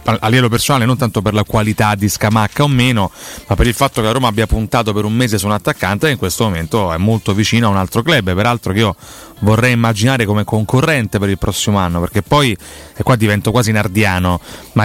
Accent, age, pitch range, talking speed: native, 30-49, 105-120 Hz, 230 wpm